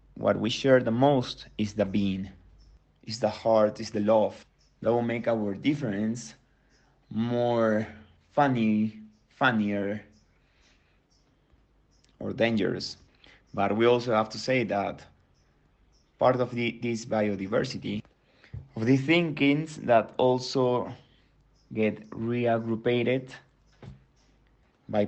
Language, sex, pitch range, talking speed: English, male, 100-120 Hz, 105 wpm